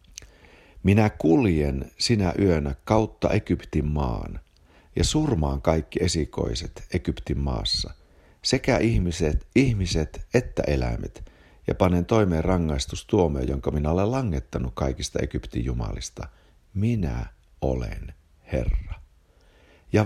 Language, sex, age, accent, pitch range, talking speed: Finnish, male, 60-79, native, 75-100 Hz, 100 wpm